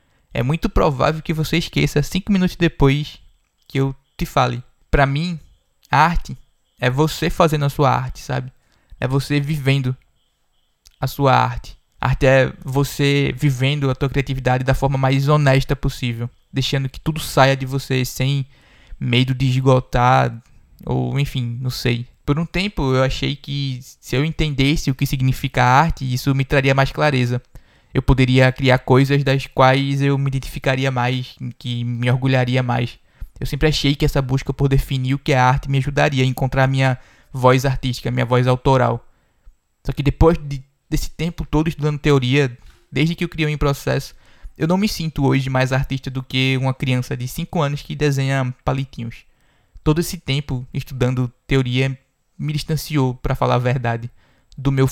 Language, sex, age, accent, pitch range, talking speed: Portuguese, male, 20-39, Brazilian, 130-145 Hz, 175 wpm